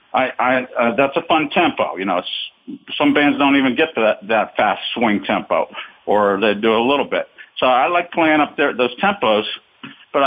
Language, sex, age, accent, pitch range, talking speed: English, male, 50-69, American, 115-150 Hz, 210 wpm